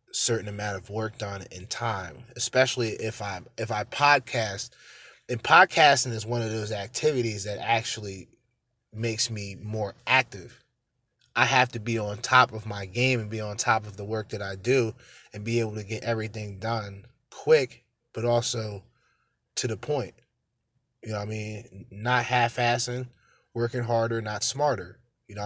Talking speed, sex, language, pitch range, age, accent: 170 wpm, male, English, 105-125 Hz, 20-39, American